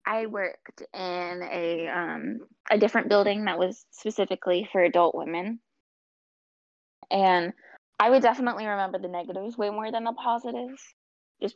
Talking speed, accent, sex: 140 wpm, American, female